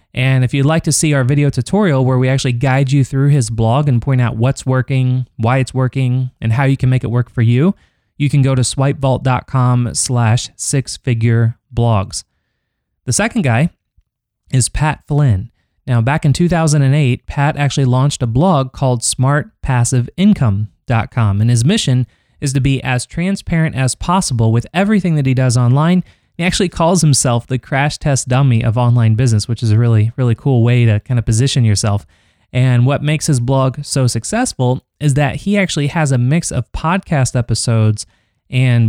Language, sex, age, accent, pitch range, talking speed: English, male, 20-39, American, 120-145 Hz, 175 wpm